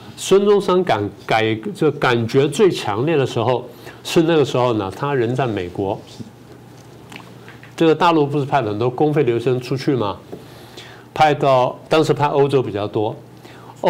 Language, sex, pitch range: Chinese, male, 120-155 Hz